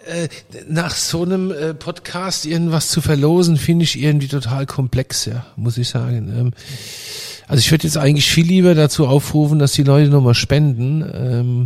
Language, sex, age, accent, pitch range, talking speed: German, male, 40-59, German, 125-155 Hz, 155 wpm